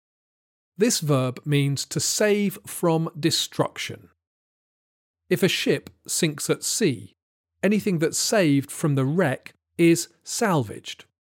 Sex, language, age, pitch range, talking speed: male, English, 40-59, 110-180 Hz, 110 wpm